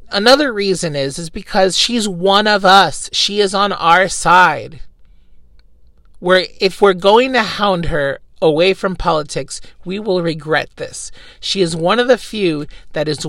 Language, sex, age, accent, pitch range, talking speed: English, male, 40-59, American, 155-200 Hz, 160 wpm